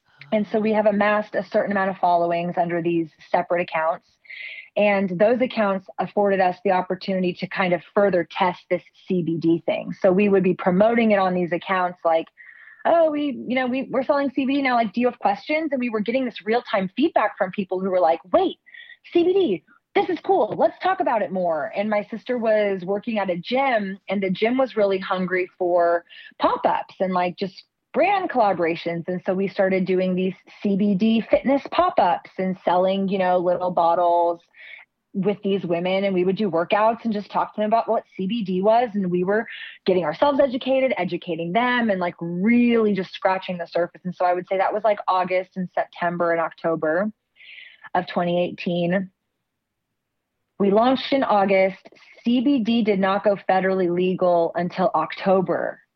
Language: English